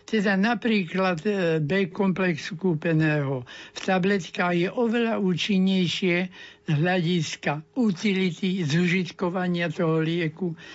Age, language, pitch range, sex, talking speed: 60-79, Slovak, 155-190 Hz, male, 90 wpm